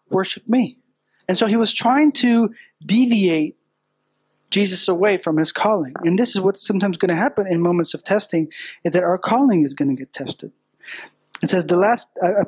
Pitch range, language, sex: 165-210 Hz, English, male